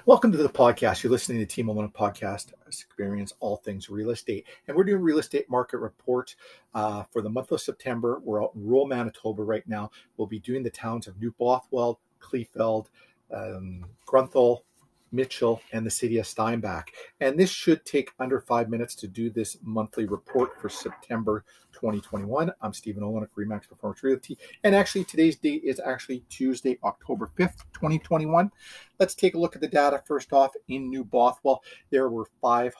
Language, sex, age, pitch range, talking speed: English, male, 40-59, 110-135 Hz, 180 wpm